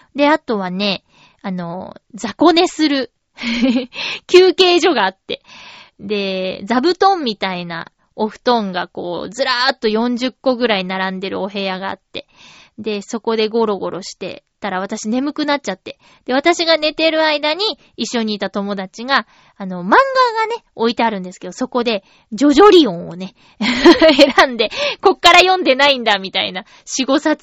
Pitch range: 210-315 Hz